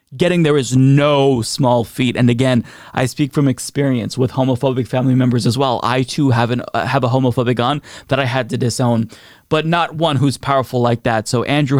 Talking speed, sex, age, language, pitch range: 205 wpm, male, 20-39, English, 115-135 Hz